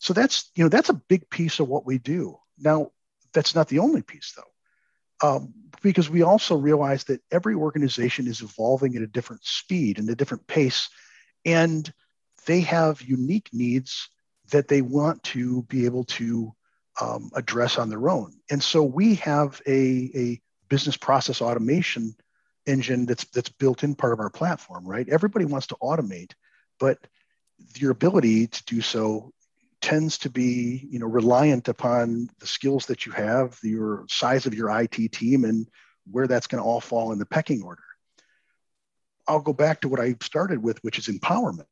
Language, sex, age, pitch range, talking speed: English, male, 50-69, 115-150 Hz, 175 wpm